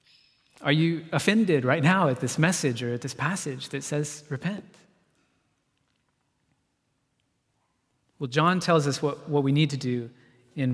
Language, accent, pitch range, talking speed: English, American, 130-160 Hz, 145 wpm